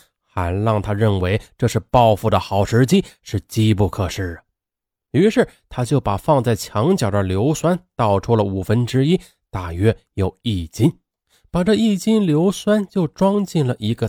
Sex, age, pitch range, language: male, 20-39, 100-155 Hz, Chinese